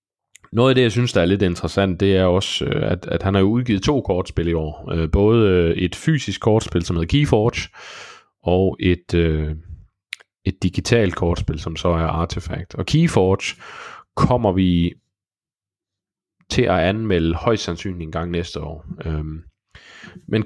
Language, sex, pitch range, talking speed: Danish, male, 85-115 Hz, 150 wpm